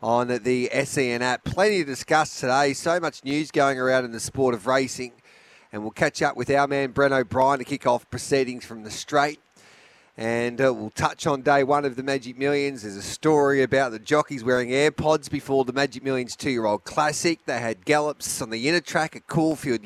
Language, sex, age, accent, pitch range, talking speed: English, male, 40-59, Australian, 125-145 Hz, 205 wpm